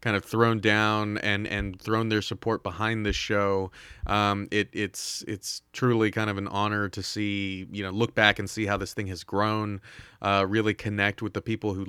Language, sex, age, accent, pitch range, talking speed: English, male, 30-49, American, 100-110 Hz, 205 wpm